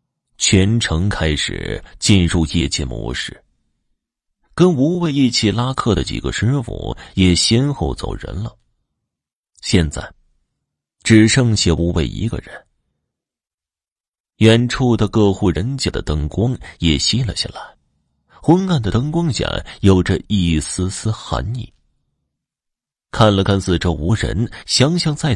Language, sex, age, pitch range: Chinese, male, 30-49, 85-125 Hz